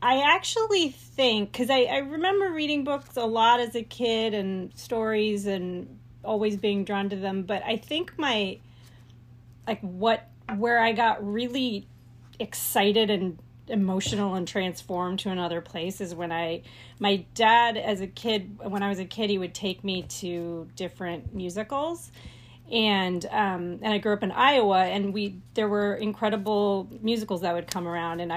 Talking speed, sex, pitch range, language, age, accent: 165 wpm, female, 175-220 Hz, English, 30-49, American